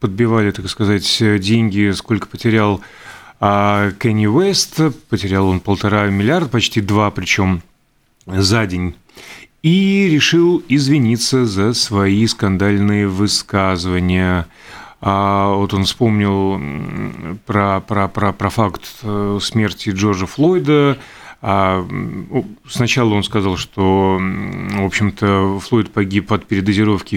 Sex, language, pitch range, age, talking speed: male, Russian, 100-120 Hz, 30-49, 100 wpm